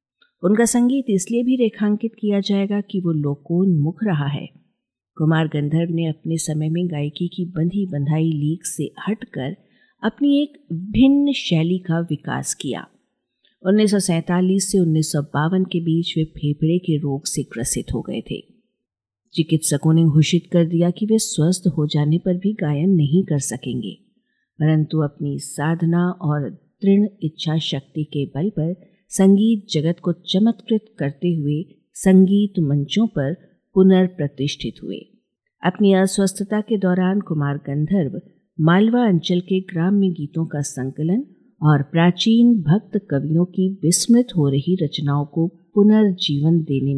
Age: 50-69